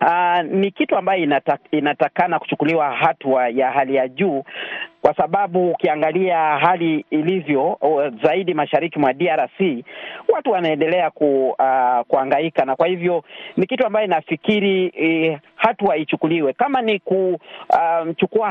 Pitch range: 155-210 Hz